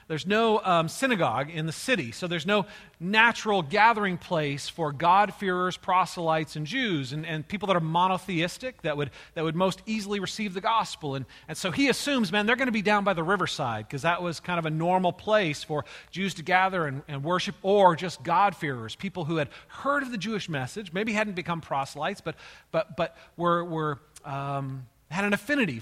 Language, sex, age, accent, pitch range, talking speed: English, male, 40-59, American, 145-195 Hz, 200 wpm